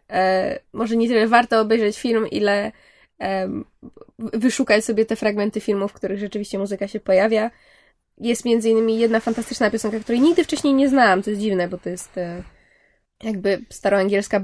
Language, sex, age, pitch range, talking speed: Polish, female, 20-39, 195-235 Hz, 155 wpm